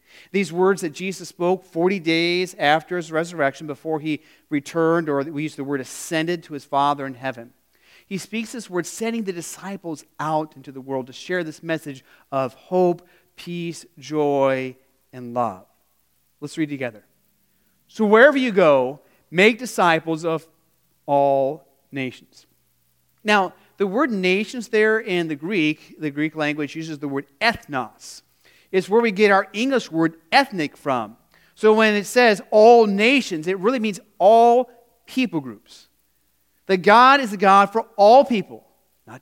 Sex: male